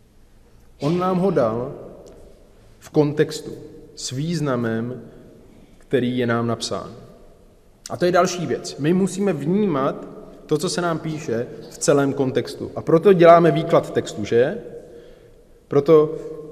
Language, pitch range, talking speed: Czech, 125-170 Hz, 125 wpm